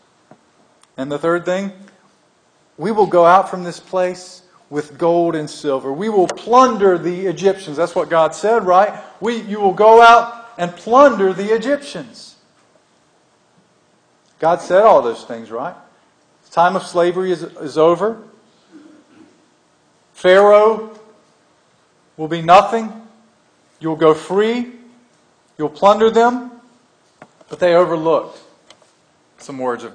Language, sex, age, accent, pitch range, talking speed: English, male, 40-59, American, 150-205 Hz, 125 wpm